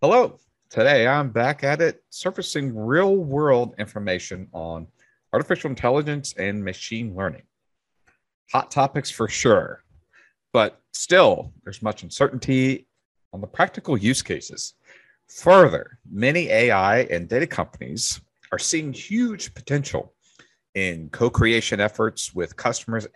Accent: American